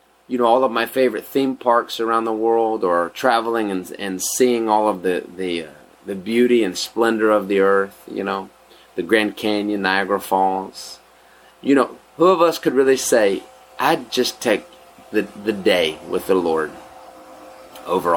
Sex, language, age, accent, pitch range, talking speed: male, English, 30-49, American, 95-120 Hz, 175 wpm